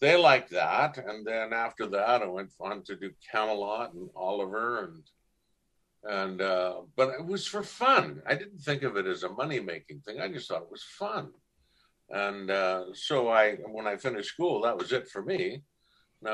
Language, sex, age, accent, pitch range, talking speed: English, male, 60-79, American, 95-120 Hz, 190 wpm